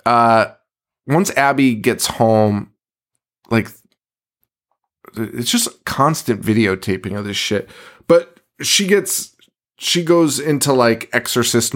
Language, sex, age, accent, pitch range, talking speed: English, male, 20-39, American, 100-130 Hz, 105 wpm